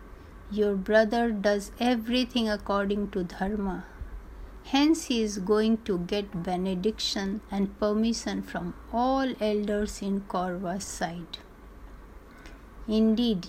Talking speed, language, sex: 100 wpm, Hindi, female